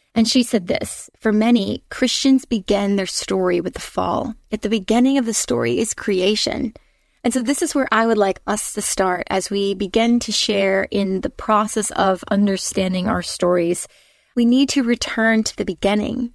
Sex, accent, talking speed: female, American, 185 wpm